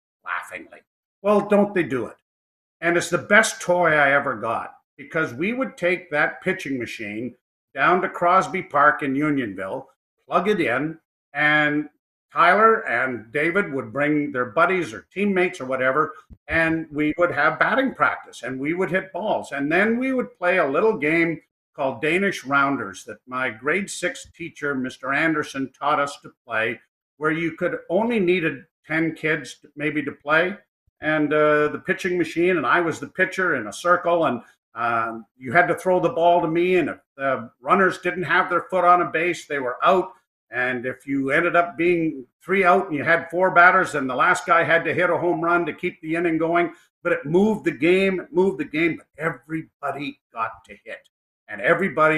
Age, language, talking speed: 50-69, English, 190 wpm